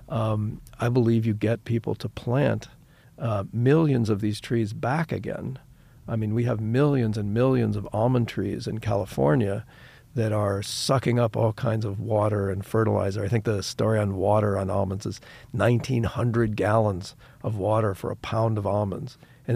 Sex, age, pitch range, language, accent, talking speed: male, 50-69, 105-125 Hz, English, American, 170 wpm